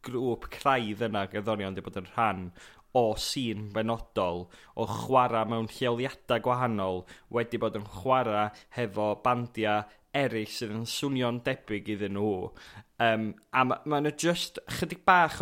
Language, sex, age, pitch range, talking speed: English, male, 20-39, 110-125 Hz, 140 wpm